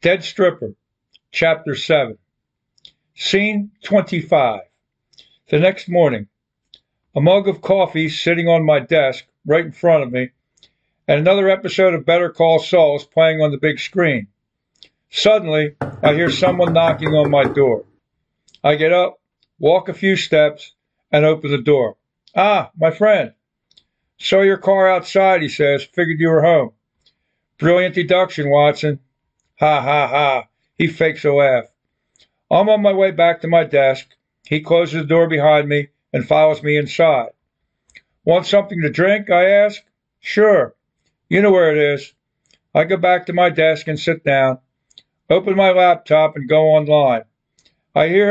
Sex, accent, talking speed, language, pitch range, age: male, American, 155 wpm, English, 150-180 Hz, 50-69